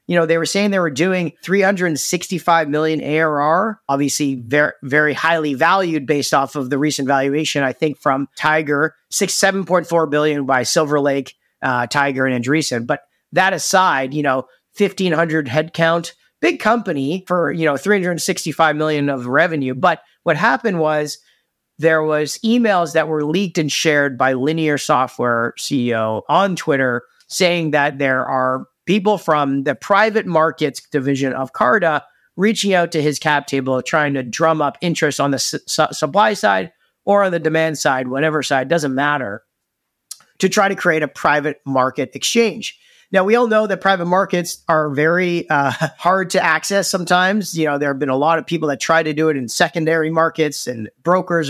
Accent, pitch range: American, 145-180 Hz